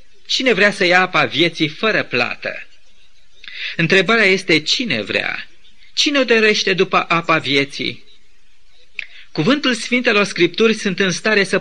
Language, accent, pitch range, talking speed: Romanian, native, 160-220 Hz, 125 wpm